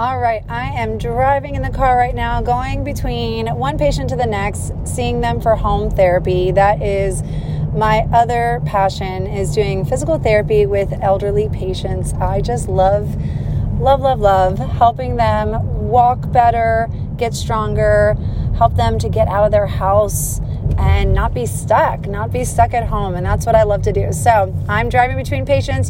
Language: English